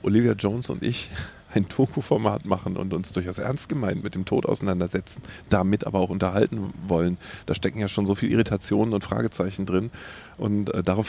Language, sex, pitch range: German, male, 95-115 Hz